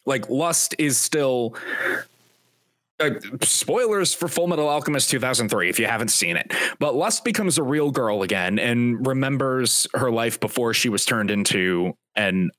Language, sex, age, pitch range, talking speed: English, male, 30-49, 120-185 Hz, 155 wpm